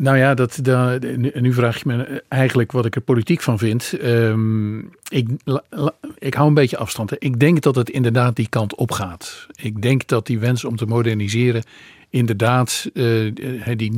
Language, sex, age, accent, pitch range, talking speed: Dutch, male, 50-69, Dutch, 115-135 Hz, 165 wpm